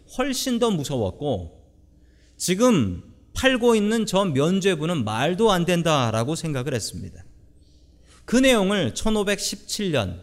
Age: 40-59